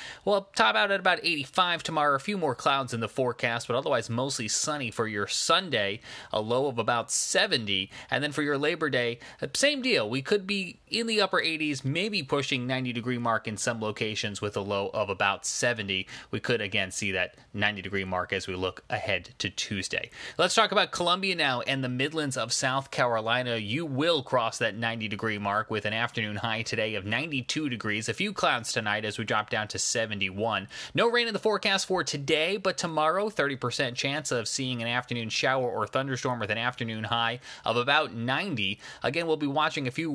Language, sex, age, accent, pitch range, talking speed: English, male, 30-49, American, 110-150 Hz, 200 wpm